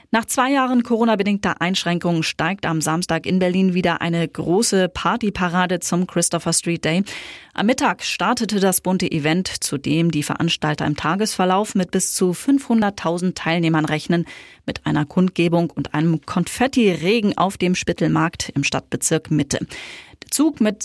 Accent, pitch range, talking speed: German, 170-220 Hz, 145 wpm